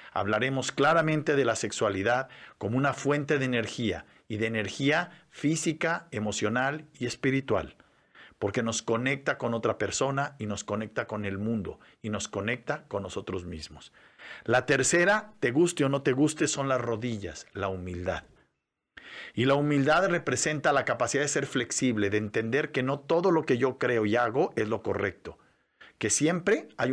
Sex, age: male, 50-69